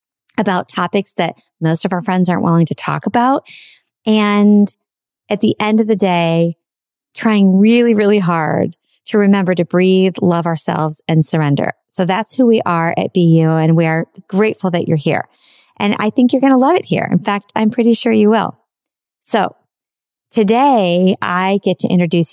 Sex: female